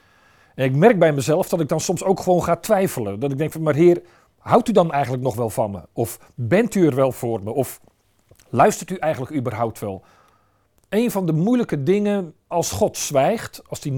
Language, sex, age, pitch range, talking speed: Dutch, male, 50-69, 135-190 Hz, 215 wpm